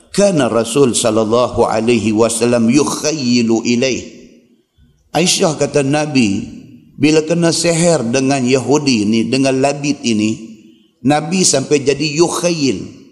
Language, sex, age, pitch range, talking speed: Malay, male, 50-69, 120-175 Hz, 105 wpm